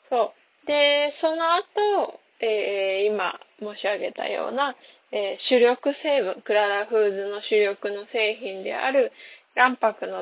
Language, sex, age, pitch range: Japanese, female, 10-29, 200-295 Hz